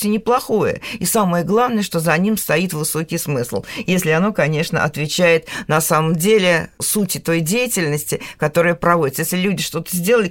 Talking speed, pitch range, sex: 150 wpm, 165-215 Hz, female